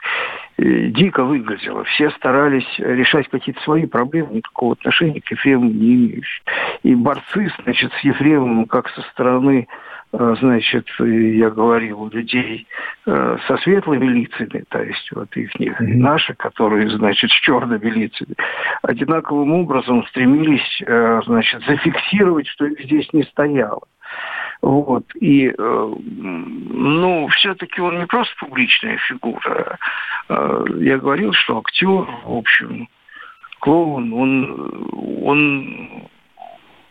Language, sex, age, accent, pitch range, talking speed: Russian, male, 60-79, native, 125-195 Hz, 110 wpm